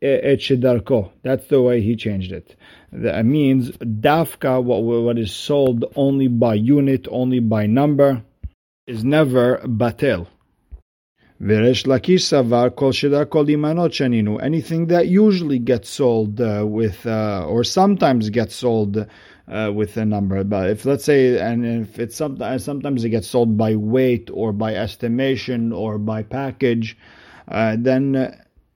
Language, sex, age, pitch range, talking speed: English, male, 50-69, 115-145 Hz, 120 wpm